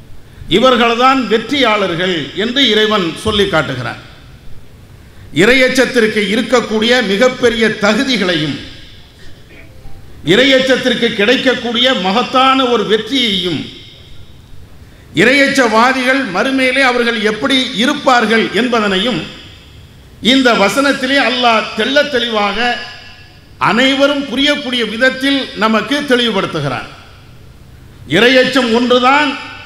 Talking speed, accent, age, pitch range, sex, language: 90 wpm, Indian, 50-69, 215-265 Hz, male, English